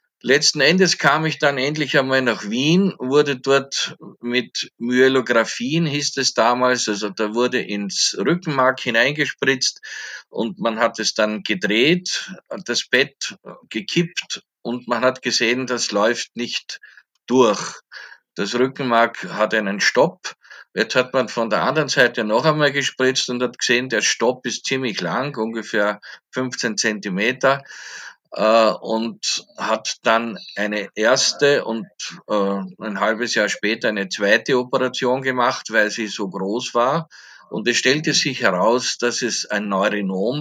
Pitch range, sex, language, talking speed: 110-140 Hz, male, German, 140 wpm